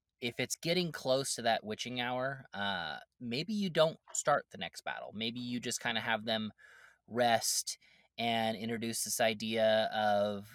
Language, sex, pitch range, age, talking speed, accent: English, male, 110-135 Hz, 20-39, 165 wpm, American